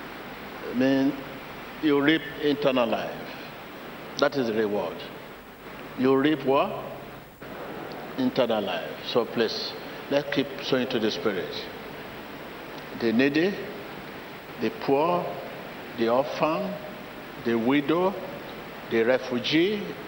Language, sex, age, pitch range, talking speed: English, male, 60-79, 130-155 Hz, 95 wpm